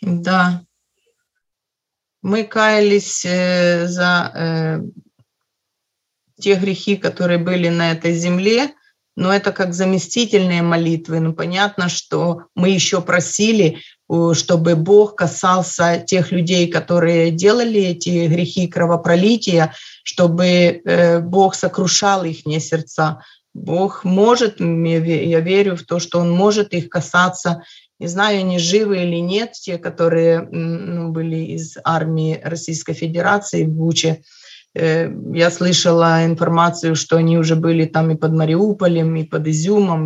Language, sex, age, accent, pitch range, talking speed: Russian, female, 30-49, native, 165-190 Hz, 125 wpm